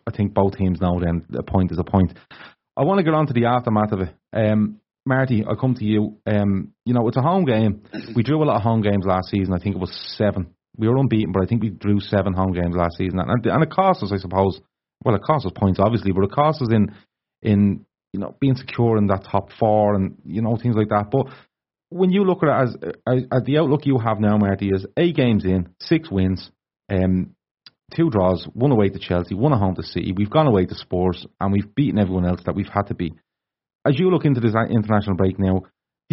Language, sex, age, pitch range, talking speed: English, male, 30-49, 95-130 Hz, 250 wpm